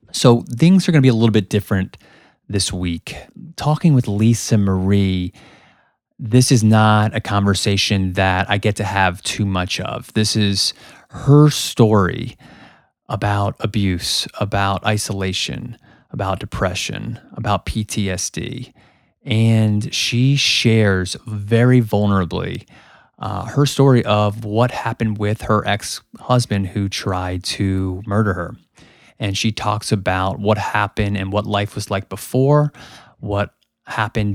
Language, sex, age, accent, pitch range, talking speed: English, male, 30-49, American, 100-120 Hz, 130 wpm